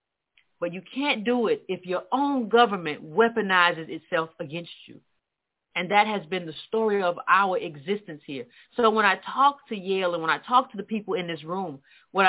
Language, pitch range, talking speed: English, 195-265 Hz, 195 wpm